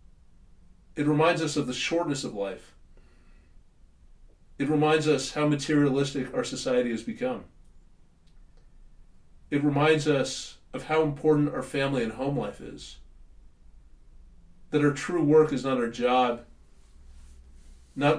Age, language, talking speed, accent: 40-59, English, 125 wpm, American